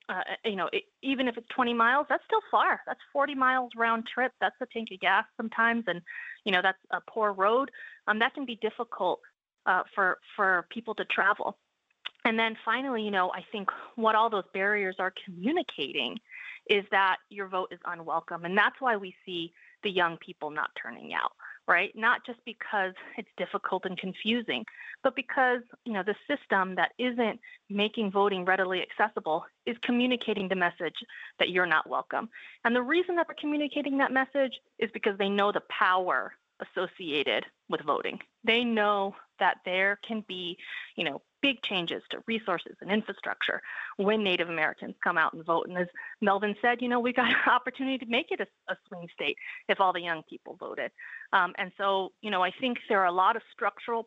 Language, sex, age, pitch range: English, female, 30-49, 190-245 Hz